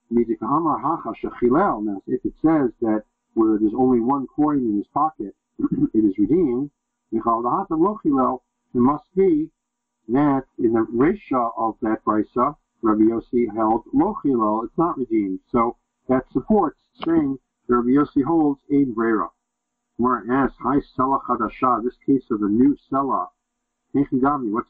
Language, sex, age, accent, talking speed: English, male, 50-69, American, 120 wpm